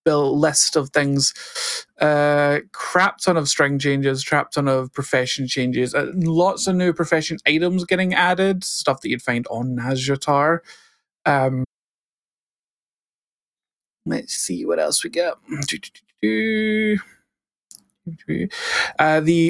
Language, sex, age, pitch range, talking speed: English, male, 30-49, 130-165 Hz, 115 wpm